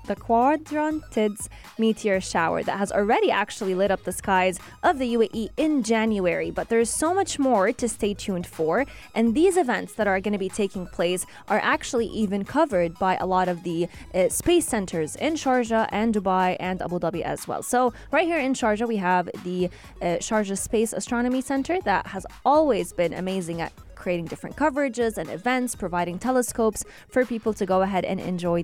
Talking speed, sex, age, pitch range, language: 190 wpm, female, 20-39, 185-260 Hz, English